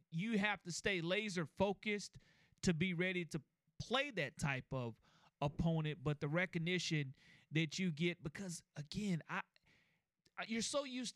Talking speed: 145 wpm